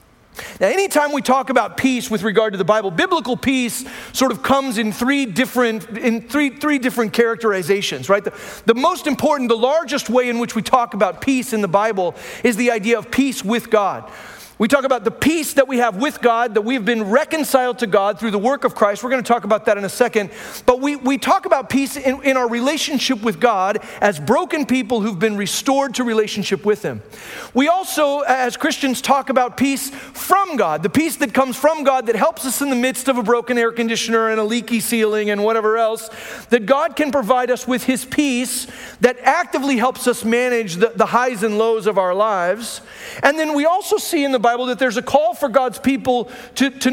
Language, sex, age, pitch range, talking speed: English, male, 40-59, 225-270 Hz, 220 wpm